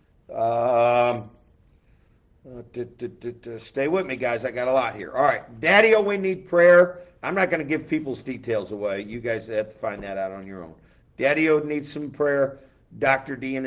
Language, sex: English, male